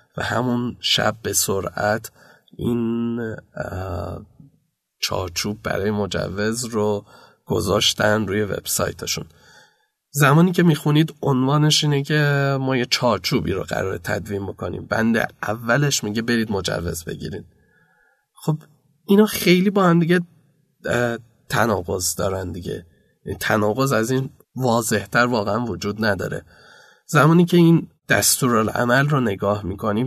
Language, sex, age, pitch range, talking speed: Persian, male, 30-49, 105-140 Hz, 110 wpm